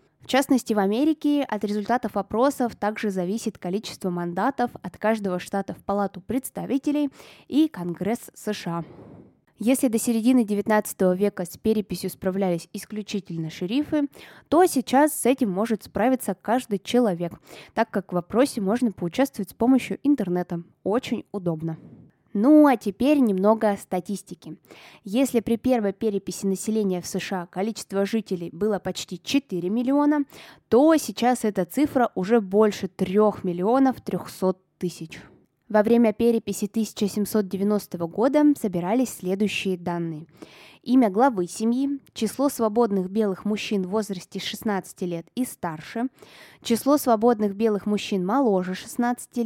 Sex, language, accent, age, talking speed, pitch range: female, Russian, native, 20-39, 125 wpm, 190-245 Hz